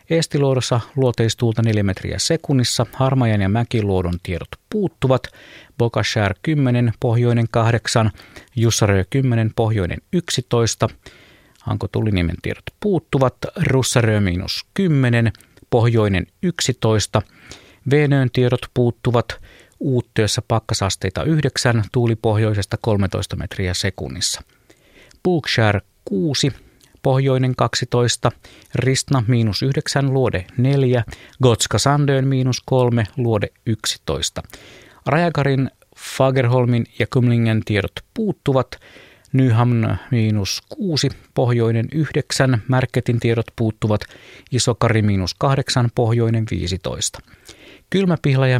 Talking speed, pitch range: 85 wpm, 105-130 Hz